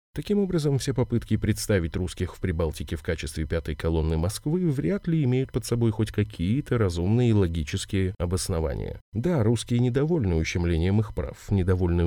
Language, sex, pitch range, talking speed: Russian, male, 85-115 Hz, 155 wpm